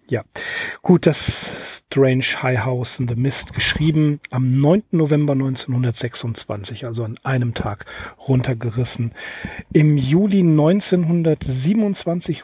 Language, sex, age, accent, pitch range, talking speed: German, male, 40-59, German, 125-165 Hz, 105 wpm